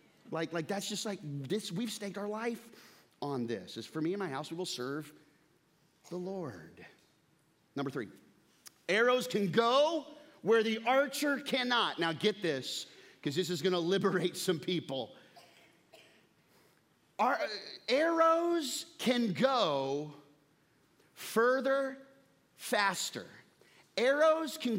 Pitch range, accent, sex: 135-225 Hz, American, male